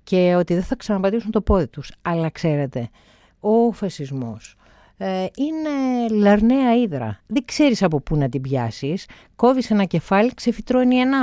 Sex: female